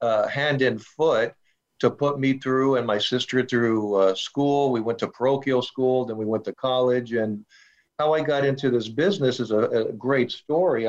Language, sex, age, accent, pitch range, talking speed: English, male, 50-69, American, 120-140 Hz, 200 wpm